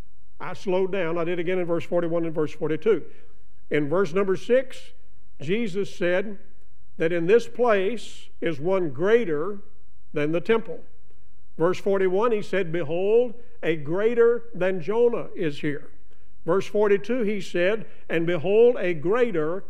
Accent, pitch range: American, 165-215 Hz